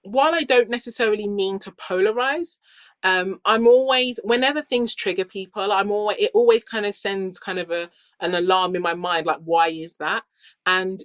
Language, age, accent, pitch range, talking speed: English, 20-39, British, 175-230 Hz, 185 wpm